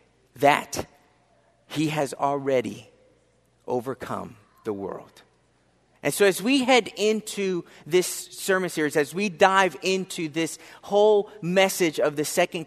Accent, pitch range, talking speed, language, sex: American, 145-205 Hz, 125 wpm, English, male